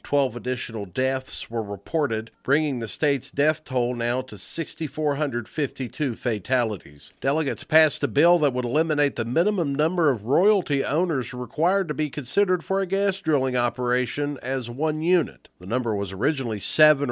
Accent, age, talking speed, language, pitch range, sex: American, 50-69, 155 wpm, English, 115-150 Hz, male